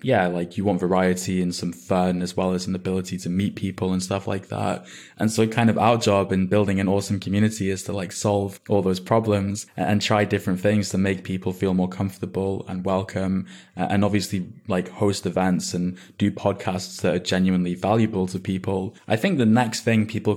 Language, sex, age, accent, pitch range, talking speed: English, male, 20-39, British, 95-105 Hz, 205 wpm